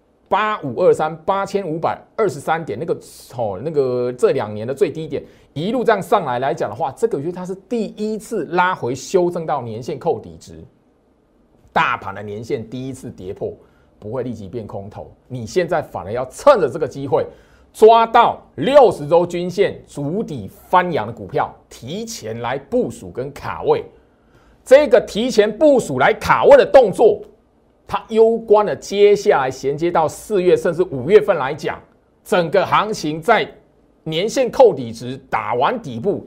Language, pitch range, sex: Chinese, 125-215 Hz, male